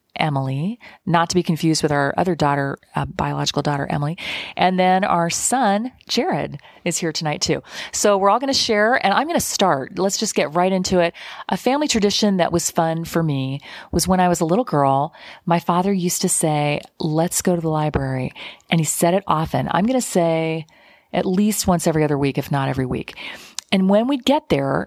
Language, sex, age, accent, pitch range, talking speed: English, female, 40-59, American, 160-205 Hz, 210 wpm